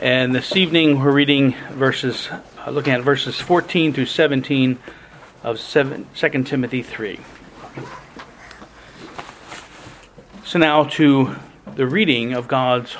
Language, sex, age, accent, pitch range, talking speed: English, male, 40-59, American, 140-210 Hz, 110 wpm